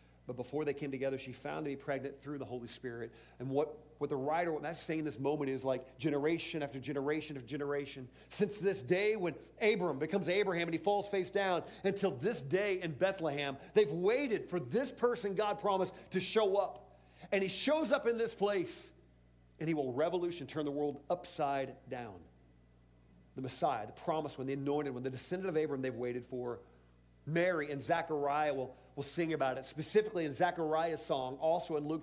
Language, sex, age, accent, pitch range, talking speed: English, male, 40-59, American, 130-185 Hz, 195 wpm